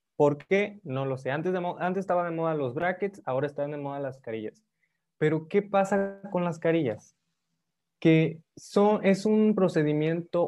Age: 20-39